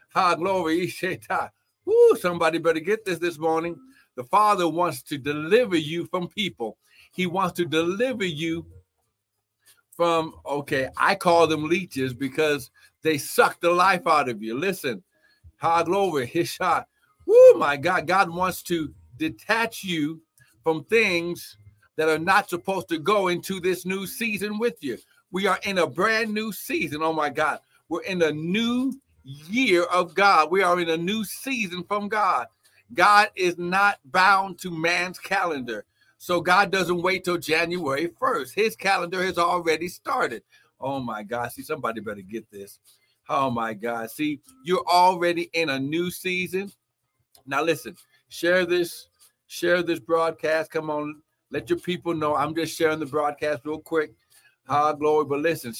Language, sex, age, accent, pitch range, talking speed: English, male, 60-79, American, 150-185 Hz, 160 wpm